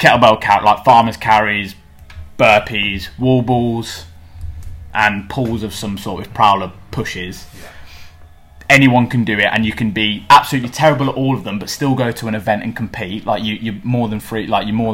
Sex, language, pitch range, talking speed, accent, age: male, English, 75-115 Hz, 190 wpm, British, 20-39